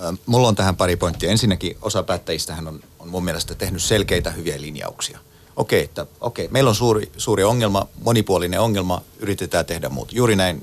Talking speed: 170 wpm